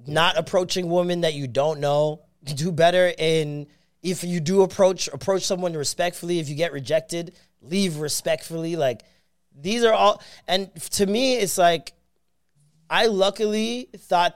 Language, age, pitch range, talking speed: English, 30-49, 135-175 Hz, 145 wpm